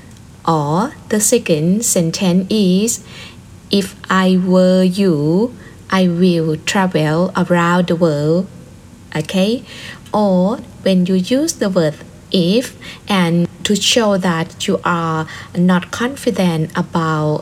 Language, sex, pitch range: Thai, female, 170-205 Hz